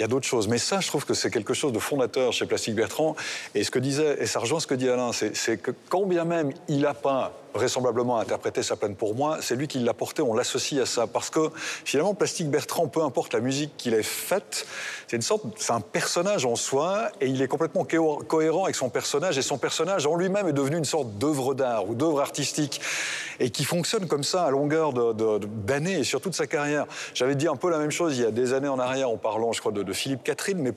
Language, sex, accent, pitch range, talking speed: French, male, French, 135-180 Hz, 255 wpm